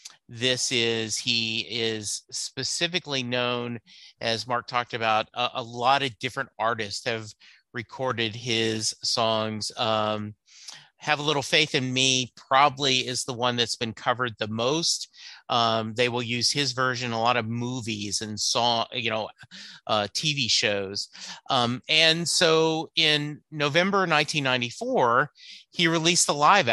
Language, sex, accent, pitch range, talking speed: English, male, American, 115-140 Hz, 140 wpm